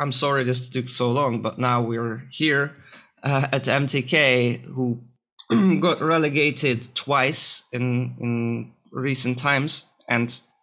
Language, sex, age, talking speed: English, male, 20-39, 125 wpm